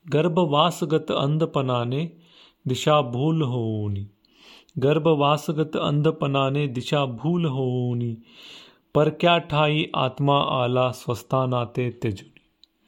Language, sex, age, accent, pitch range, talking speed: Marathi, male, 40-59, native, 125-150 Hz, 85 wpm